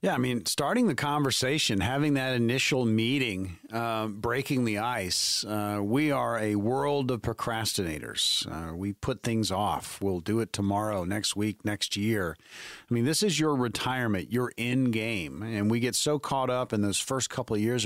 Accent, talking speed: American, 185 wpm